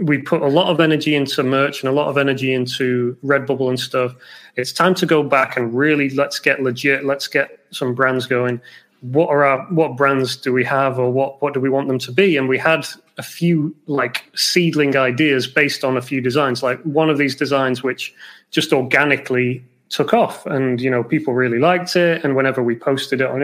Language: English